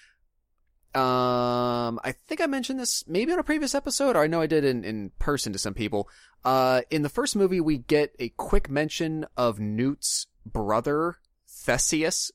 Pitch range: 110-140 Hz